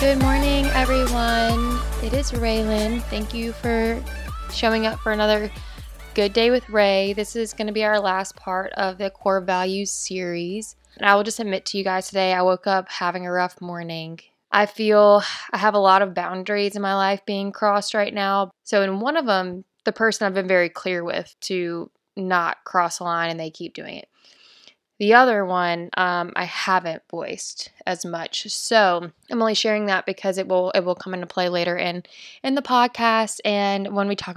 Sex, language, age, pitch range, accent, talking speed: female, English, 20-39, 180-210 Hz, American, 195 wpm